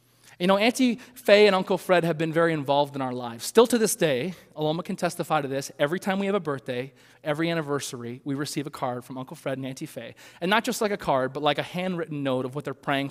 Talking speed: 255 wpm